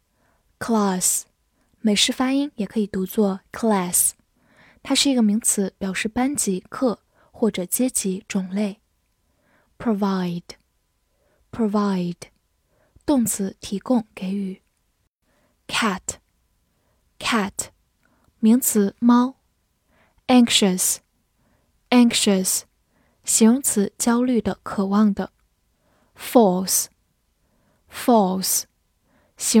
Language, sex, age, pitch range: Chinese, female, 10-29, 200-245 Hz